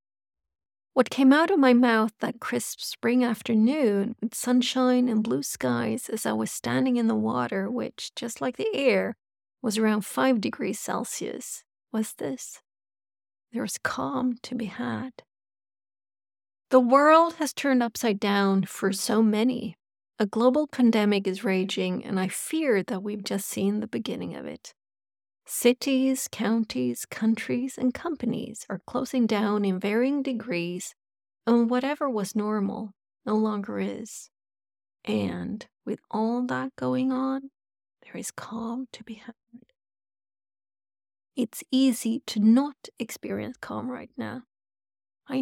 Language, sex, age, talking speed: English, female, 40-59, 135 wpm